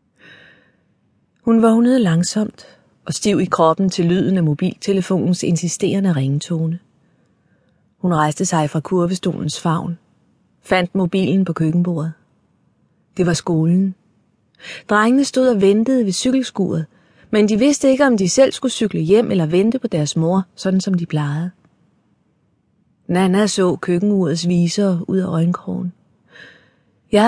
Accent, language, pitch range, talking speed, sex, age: native, Danish, 170-205 Hz, 130 wpm, female, 30-49